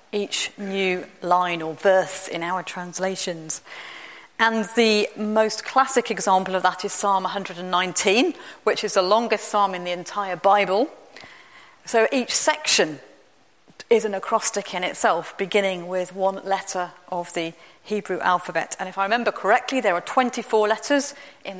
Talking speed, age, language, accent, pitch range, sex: 145 wpm, 40-59, English, British, 180-215 Hz, female